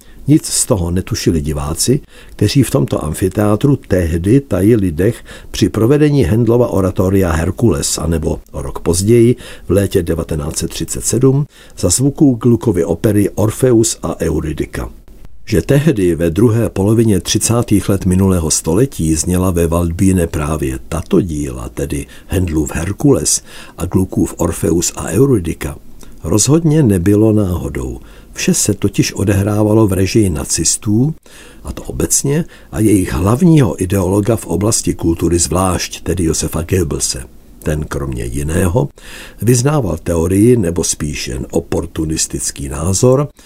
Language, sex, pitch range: Czech, male, 85-115 Hz